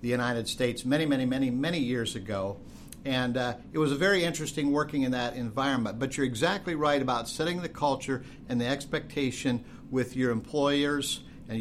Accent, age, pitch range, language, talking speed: American, 50-69, 125-160 Hz, English, 180 wpm